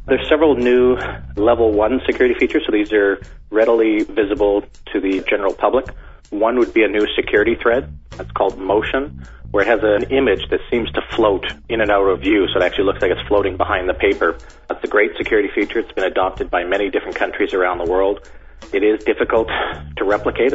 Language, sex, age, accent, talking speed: English, male, 40-59, American, 205 wpm